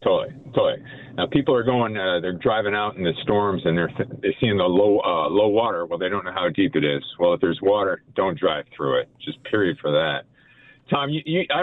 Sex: male